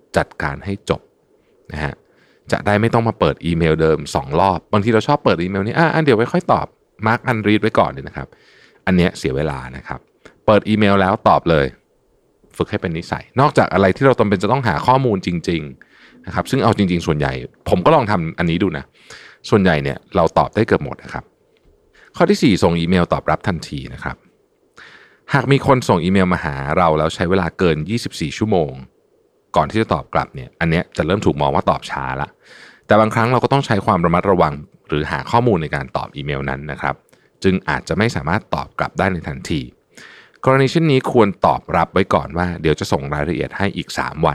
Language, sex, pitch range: Thai, male, 75-110 Hz